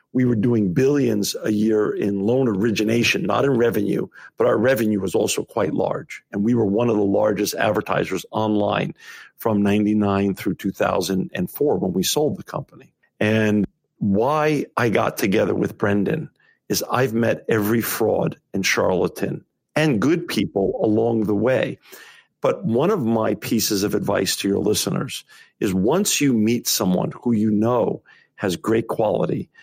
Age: 50-69